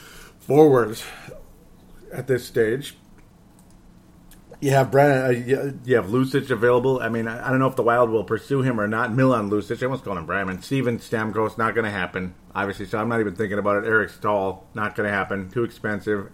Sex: male